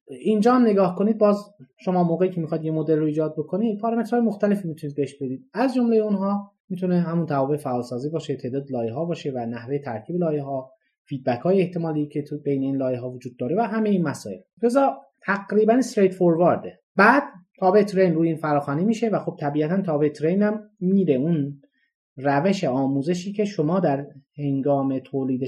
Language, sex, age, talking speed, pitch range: Persian, male, 30-49, 170 wpm, 140-195 Hz